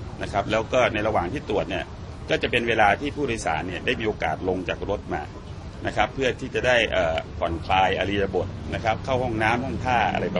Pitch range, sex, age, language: 95-125 Hz, male, 30-49, Thai